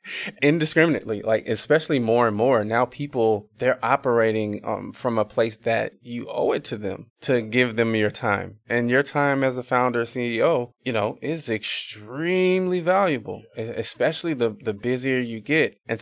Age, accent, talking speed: 20-39, American, 165 wpm